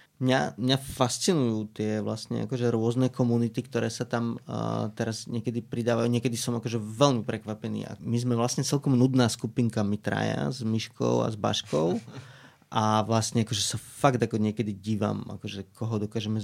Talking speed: 155 wpm